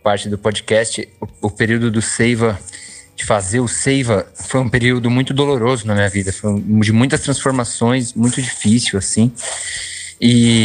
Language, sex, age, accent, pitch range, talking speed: Portuguese, male, 20-39, Brazilian, 100-115 Hz, 165 wpm